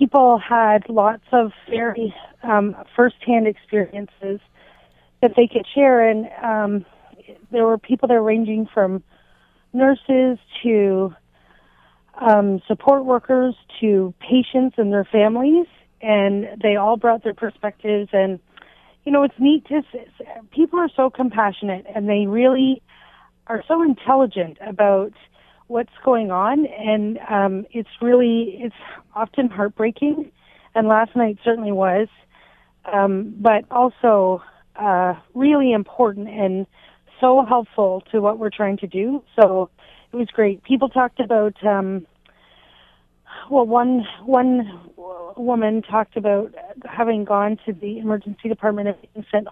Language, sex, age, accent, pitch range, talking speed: English, female, 30-49, American, 200-245 Hz, 130 wpm